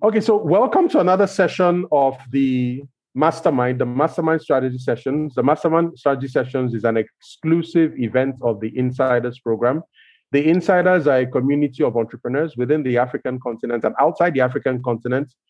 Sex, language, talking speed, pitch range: male, English, 160 wpm, 125-160 Hz